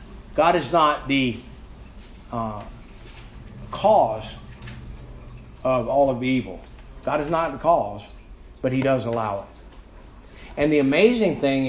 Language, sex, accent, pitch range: English, male, American, 110-155 Hz